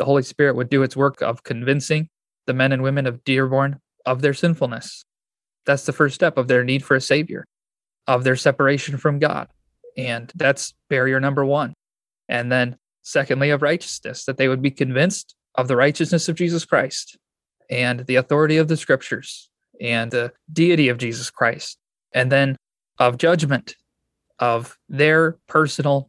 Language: English